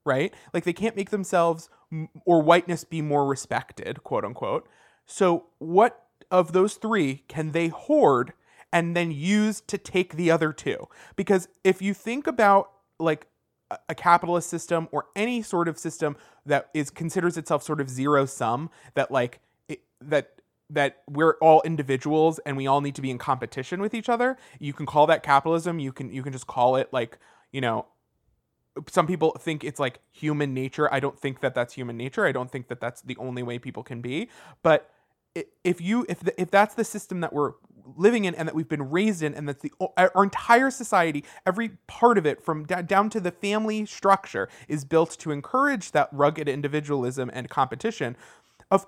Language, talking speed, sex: English, 190 wpm, male